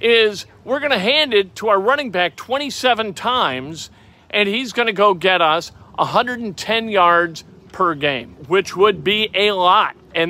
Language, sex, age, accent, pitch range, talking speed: English, male, 50-69, American, 140-200 Hz, 170 wpm